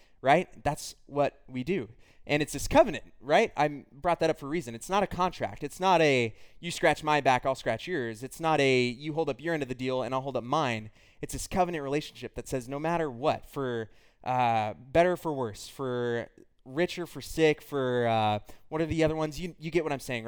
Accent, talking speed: American, 230 wpm